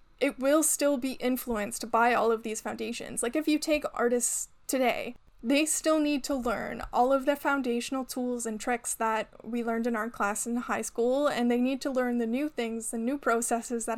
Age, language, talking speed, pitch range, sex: 10-29, English, 210 wpm, 235-285 Hz, female